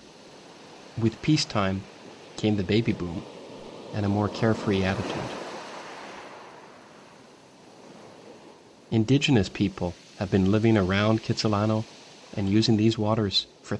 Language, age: English, 40-59